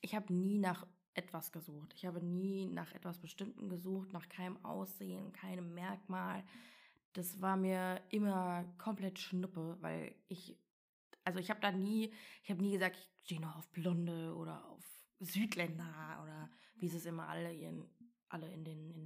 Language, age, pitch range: German, 20-39, 170-200 Hz